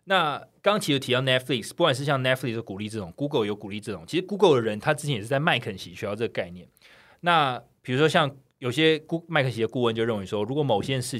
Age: 20-39